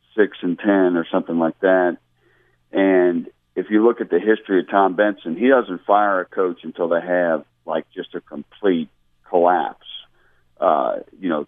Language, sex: English, male